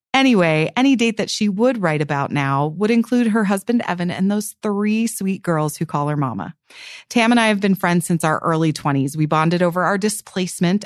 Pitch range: 165-215 Hz